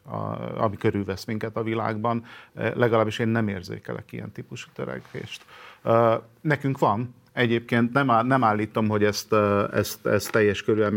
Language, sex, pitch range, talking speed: Hungarian, male, 100-115 Hz, 160 wpm